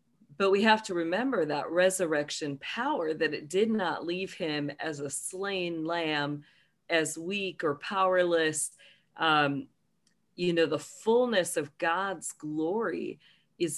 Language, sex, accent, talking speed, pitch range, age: English, female, American, 135 wpm, 145-185 Hz, 40-59